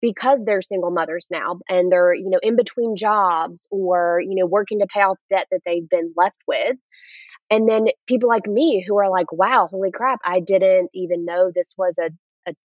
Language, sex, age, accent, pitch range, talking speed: English, female, 20-39, American, 180-215 Hz, 210 wpm